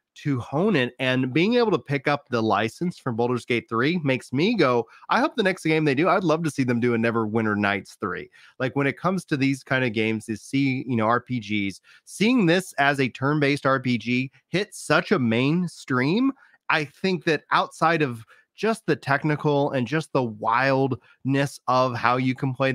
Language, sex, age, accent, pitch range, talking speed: English, male, 30-49, American, 120-150 Hz, 205 wpm